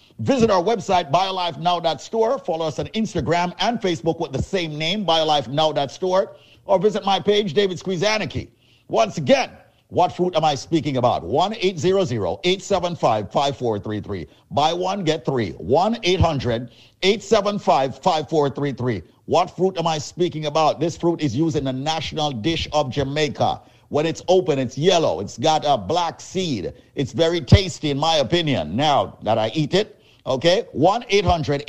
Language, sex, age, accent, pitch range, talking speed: English, male, 50-69, American, 140-180 Hz, 150 wpm